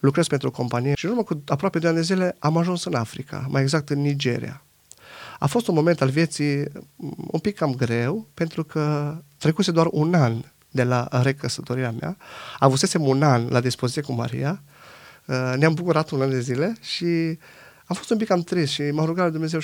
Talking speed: 200 wpm